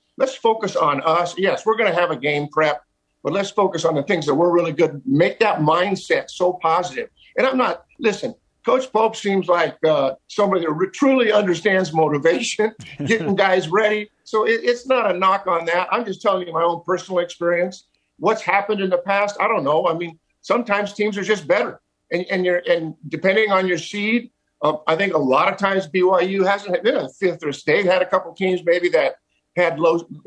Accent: American